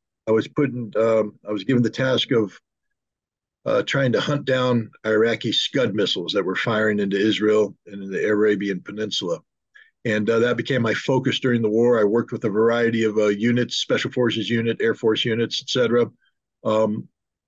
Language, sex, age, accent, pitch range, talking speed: German, male, 50-69, American, 110-125 Hz, 185 wpm